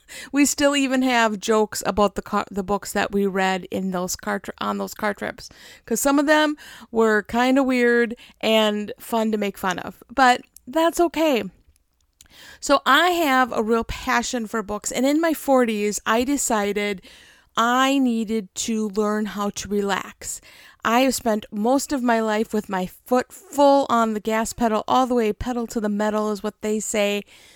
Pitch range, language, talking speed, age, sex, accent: 210-260 Hz, English, 185 wpm, 50-69, female, American